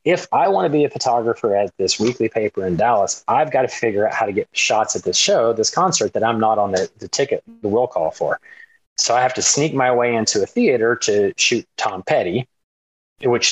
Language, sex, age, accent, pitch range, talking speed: English, male, 30-49, American, 110-175 Hz, 235 wpm